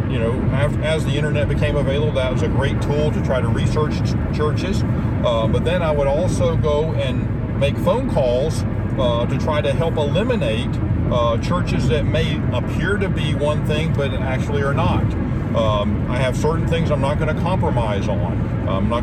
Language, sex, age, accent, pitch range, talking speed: English, male, 50-69, American, 110-135 Hz, 190 wpm